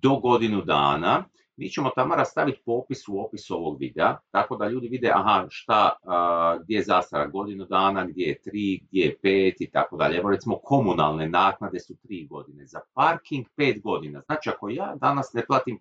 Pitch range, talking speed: 95-130 Hz, 180 wpm